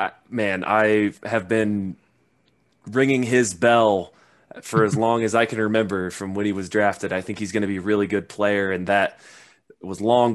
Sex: male